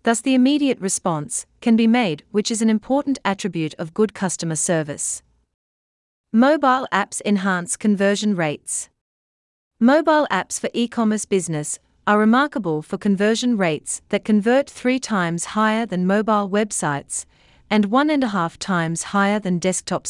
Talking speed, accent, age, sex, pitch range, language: 145 wpm, Australian, 40-59, female, 165-235 Hz, English